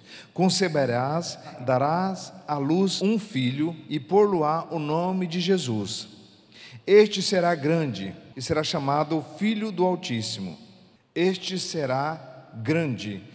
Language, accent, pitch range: Portuguese, Brazilian, 130-180 Hz